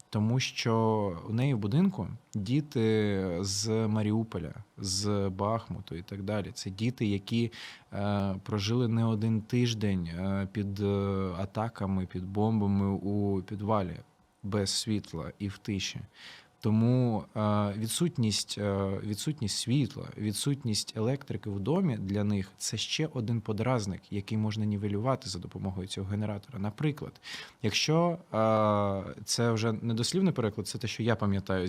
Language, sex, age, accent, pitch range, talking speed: Ukrainian, male, 20-39, native, 100-125 Hz, 130 wpm